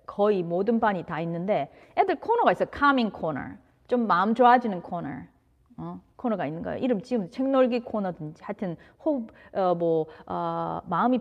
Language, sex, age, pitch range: Korean, female, 30-49, 175-245 Hz